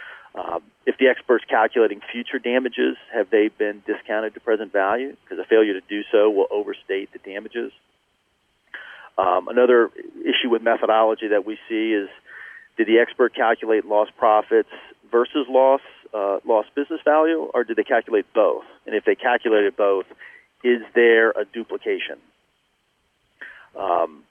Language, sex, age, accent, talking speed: English, male, 40-59, American, 150 wpm